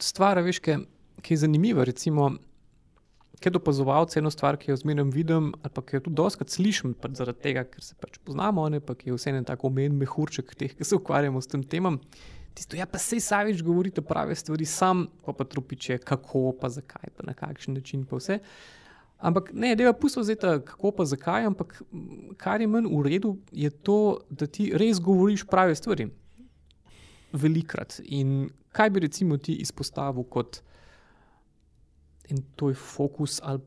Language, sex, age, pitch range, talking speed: English, male, 20-39, 135-175 Hz, 165 wpm